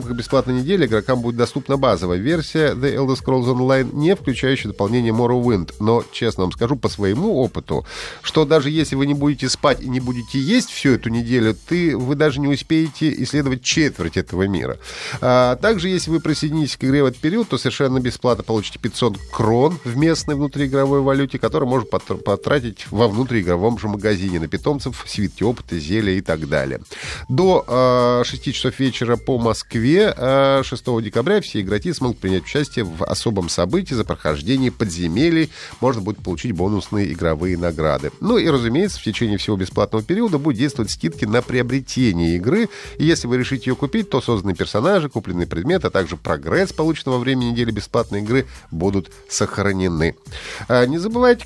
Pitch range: 105-140 Hz